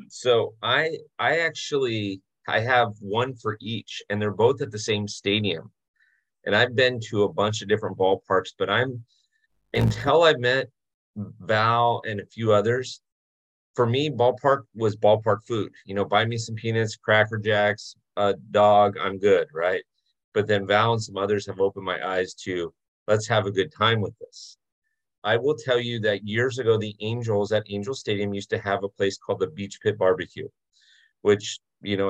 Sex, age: male, 30-49